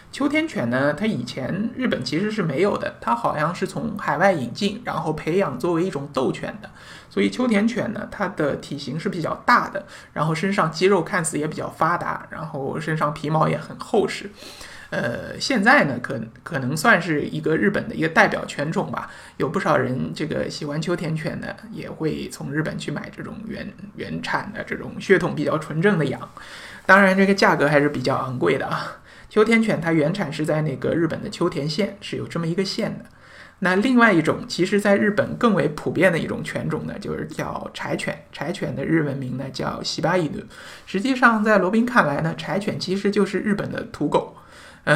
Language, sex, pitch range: Chinese, male, 160-205 Hz